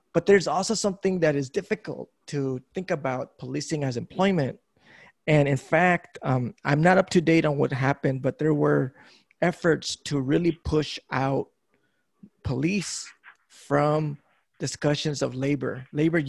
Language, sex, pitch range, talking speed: English, male, 145-165 Hz, 145 wpm